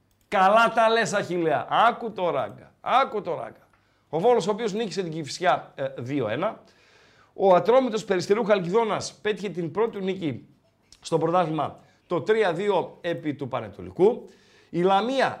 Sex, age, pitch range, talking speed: male, 50-69, 135-200 Hz, 140 wpm